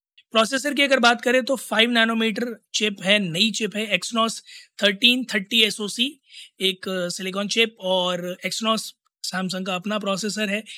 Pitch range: 185-225 Hz